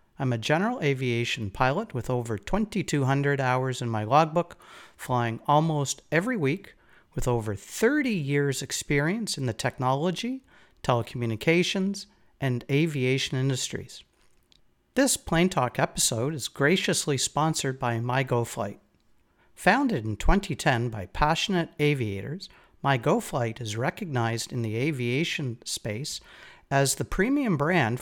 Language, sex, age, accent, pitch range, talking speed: English, male, 50-69, American, 125-165 Hz, 115 wpm